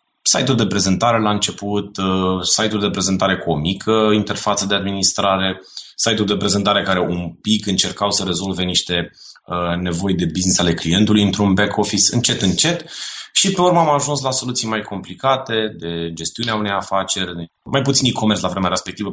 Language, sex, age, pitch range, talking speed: Romanian, male, 20-39, 90-110 Hz, 180 wpm